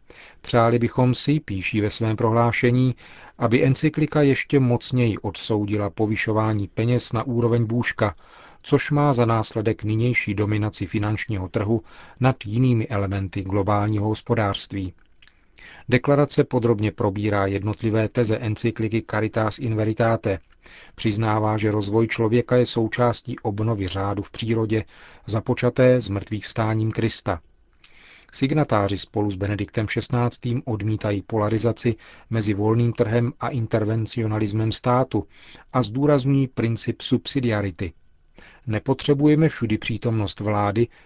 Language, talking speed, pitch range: Czech, 110 wpm, 105-120 Hz